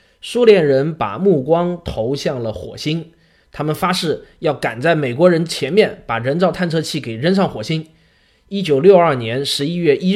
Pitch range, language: 135-195 Hz, Chinese